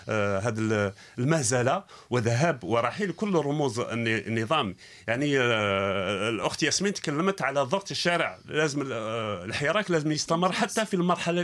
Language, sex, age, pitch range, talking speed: Arabic, male, 40-59, 115-170 Hz, 125 wpm